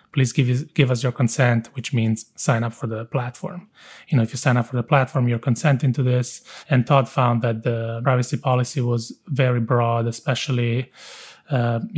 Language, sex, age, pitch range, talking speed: English, male, 30-49, 120-140 Hz, 195 wpm